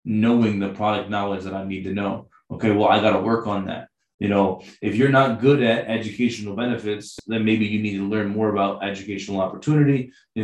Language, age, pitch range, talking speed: English, 20-39, 100-120 Hz, 215 wpm